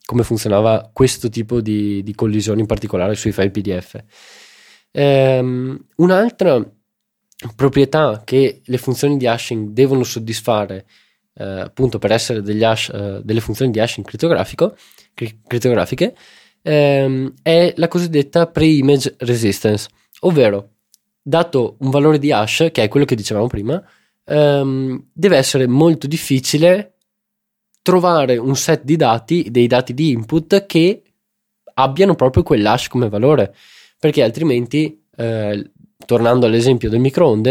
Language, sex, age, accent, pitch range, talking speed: Italian, male, 20-39, native, 110-155 Hz, 130 wpm